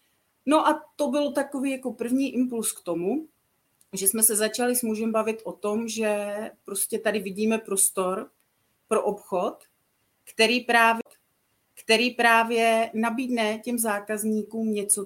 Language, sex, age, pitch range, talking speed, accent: Czech, female, 40-59, 200-240 Hz, 130 wpm, native